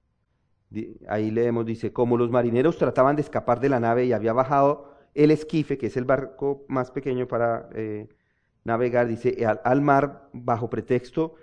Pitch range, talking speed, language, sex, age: 110-150 Hz, 165 wpm, English, male, 40-59